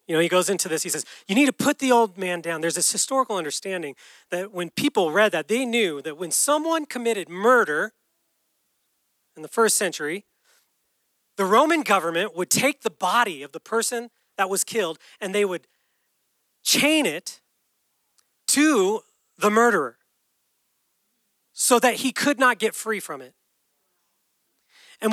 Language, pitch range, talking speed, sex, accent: English, 195-285 Hz, 160 wpm, male, American